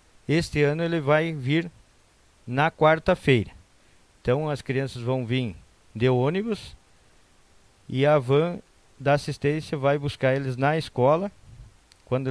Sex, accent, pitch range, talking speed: male, Brazilian, 115-155 Hz, 120 wpm